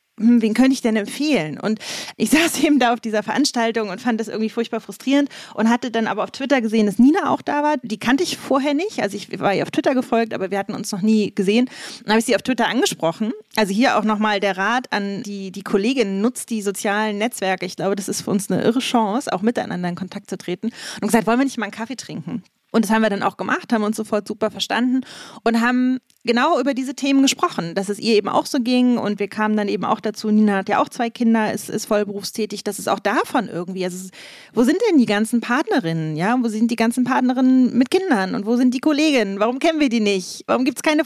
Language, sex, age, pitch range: German, female, 30-49, 210-255 Hz